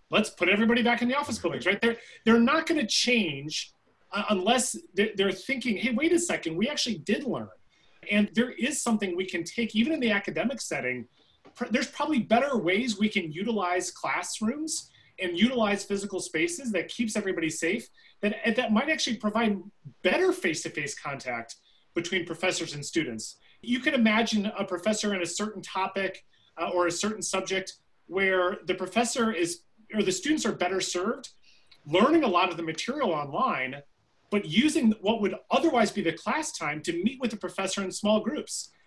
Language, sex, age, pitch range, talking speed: English, male, 30-49, 180-230 Hz, 180 wpm